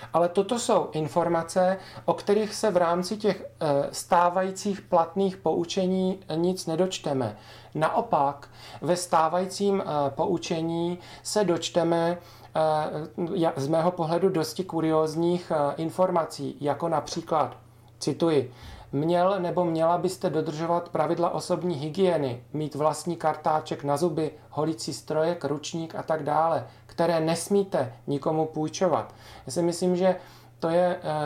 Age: 40-59